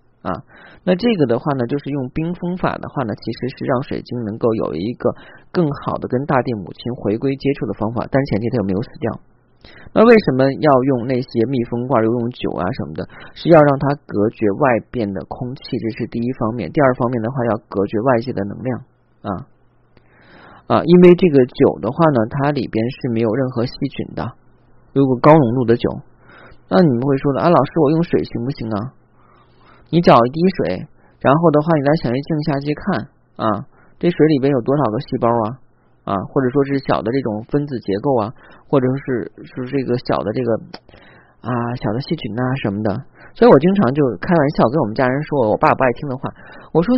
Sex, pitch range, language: male, 115-145 Hz, Chinese